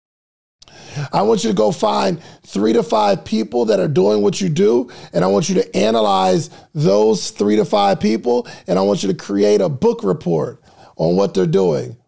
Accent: American